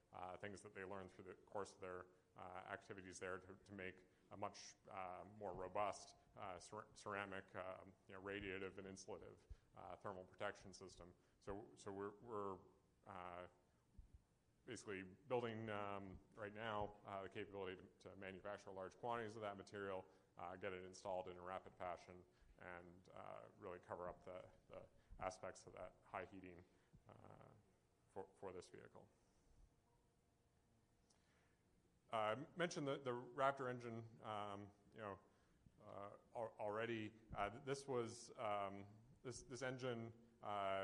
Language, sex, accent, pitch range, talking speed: English, male, American, 95-110 Hz, 145 wpm